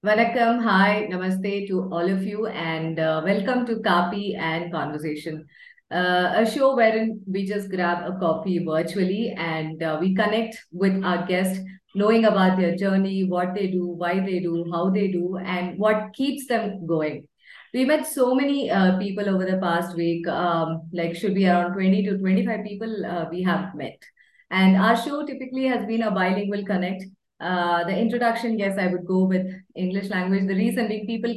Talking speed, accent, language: 180 wpm, Indian, English